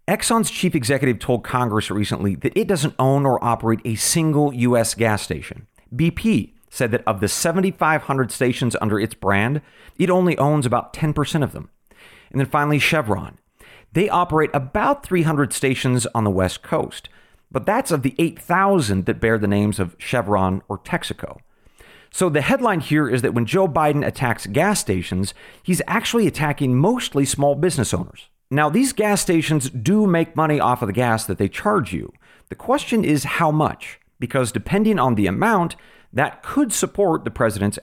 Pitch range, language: 115-165 Hz, English